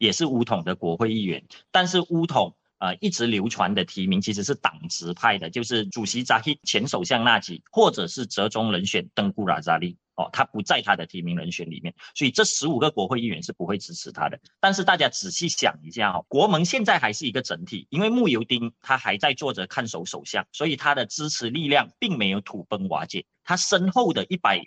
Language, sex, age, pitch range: Chinese, male, 30-49, 120-190 Hz